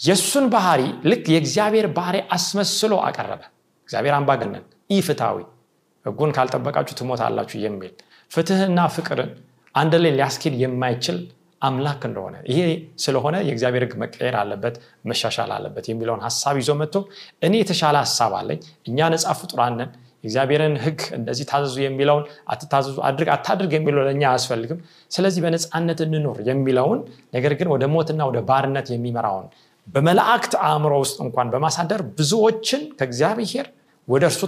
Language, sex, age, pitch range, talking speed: Amharic, male, 30-49, 135-195 Hz, 95 wpm